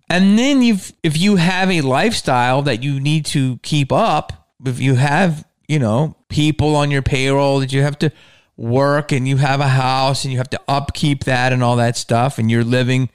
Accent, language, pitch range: American, English, 125-170 Hz